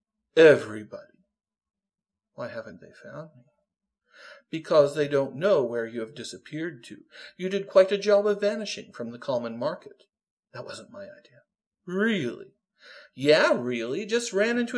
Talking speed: 145 wpm